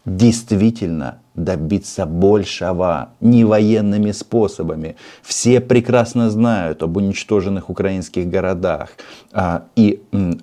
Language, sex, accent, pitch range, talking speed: Russian, male, native, 95-115 Hz, 90 wpm